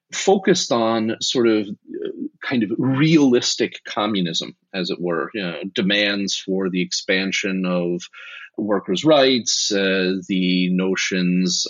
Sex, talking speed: male, 110 wpm